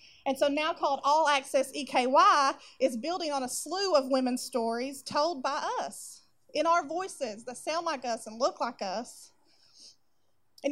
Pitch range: 270-345 Hz